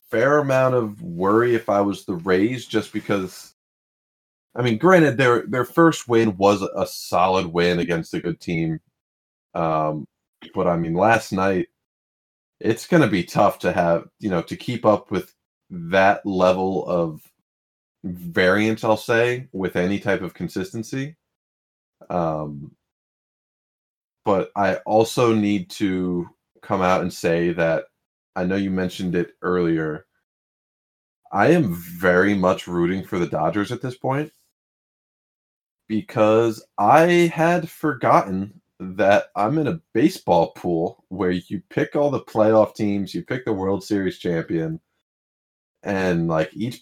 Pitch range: 90-120 Hz